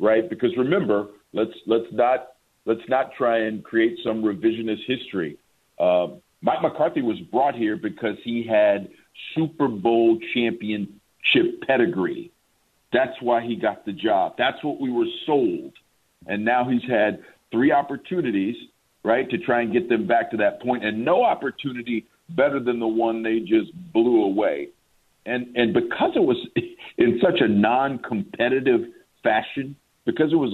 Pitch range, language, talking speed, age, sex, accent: 110-145 Hz, English, 155 wpm, 50-69, male, American